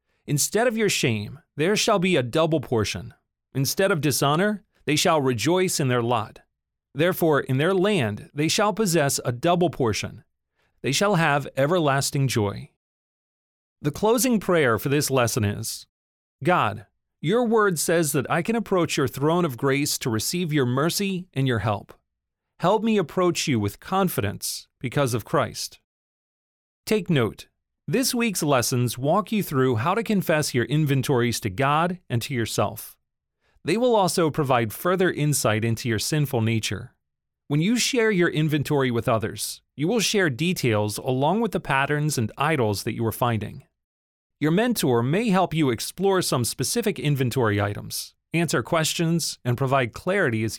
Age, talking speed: 40-59, 160 wpm